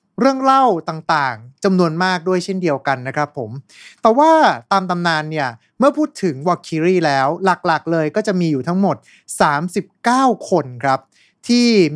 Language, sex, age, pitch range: Thai, male, 20-39, 155-210 Hz